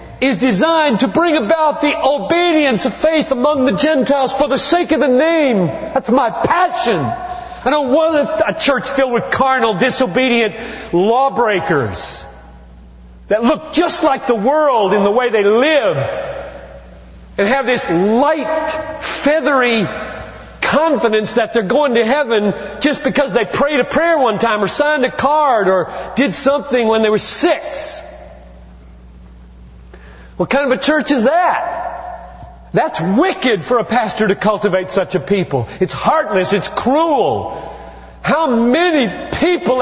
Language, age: English, 40-59